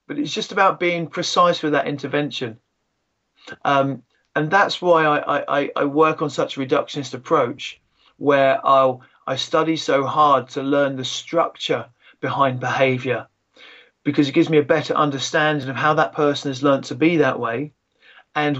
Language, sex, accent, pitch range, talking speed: English, male, British, 135-155 Hz, 170 wpm